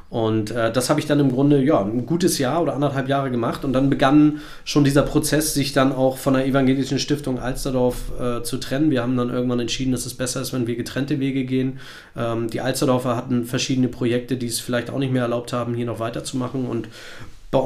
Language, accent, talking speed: German, German, 225 wpm